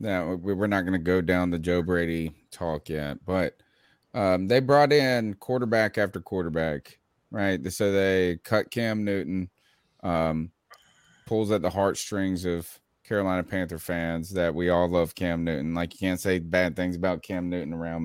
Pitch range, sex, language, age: 90-110 Hz, male, English, 30-49